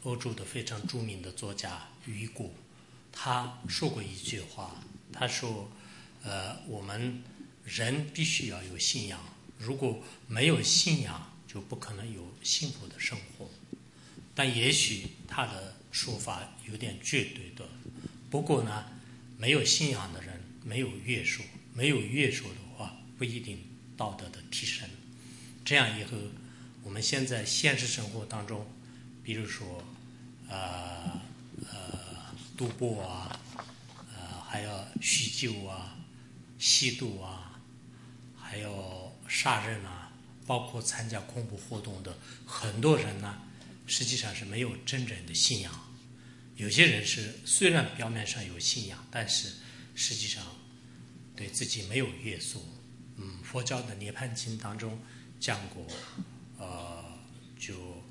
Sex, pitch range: male, 105-125 Hz